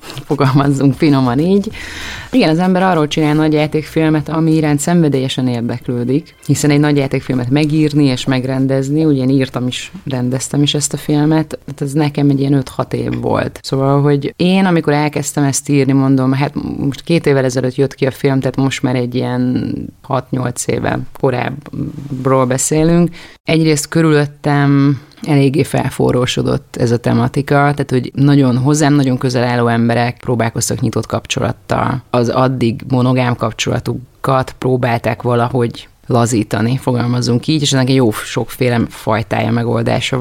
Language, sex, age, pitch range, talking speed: Hungarian, female, 30-49, 120-145 Hz, 140 wpm